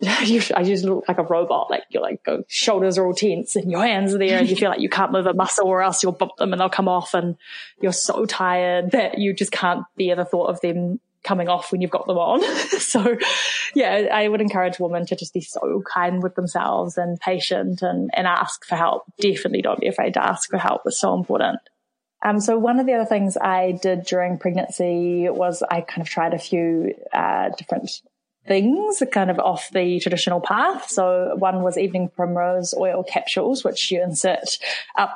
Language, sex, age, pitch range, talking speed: English, female, 20-39, 180-205 Hz, 215 wpm